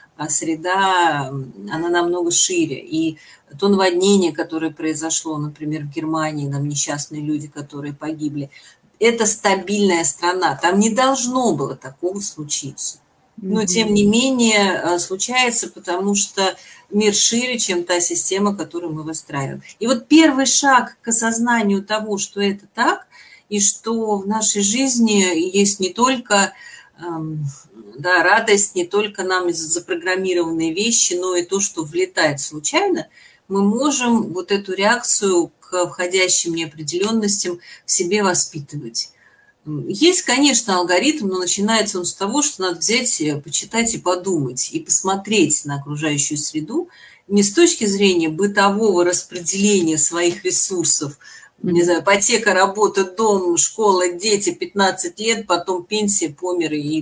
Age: 40-59